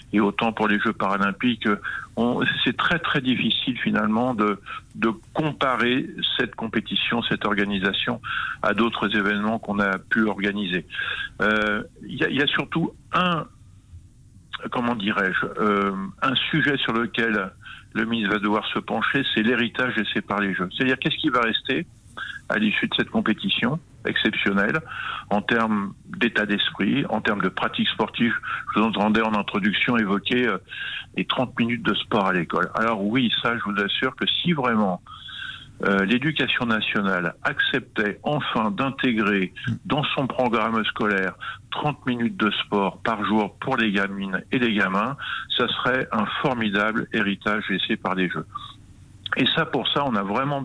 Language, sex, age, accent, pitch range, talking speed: French, male, 50-69, French, 100-120 Hz, 155 wpm